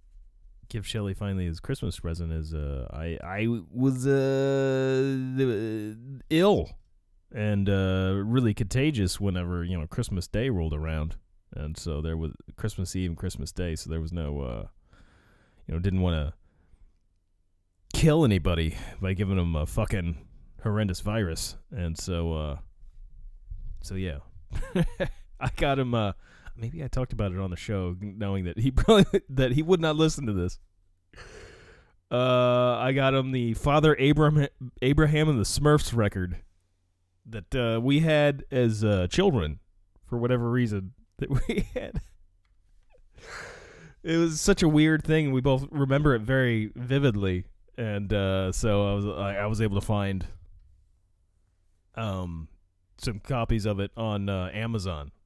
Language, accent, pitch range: English, American, 90-125 Hz